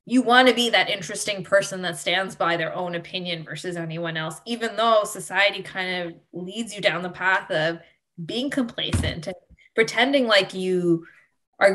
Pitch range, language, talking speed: 185-265 Hz, English, 170 wpm